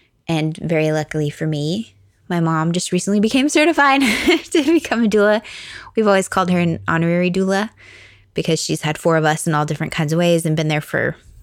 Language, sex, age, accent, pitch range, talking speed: English, female, 20-39, American, 160-190 Hz, 200 wpm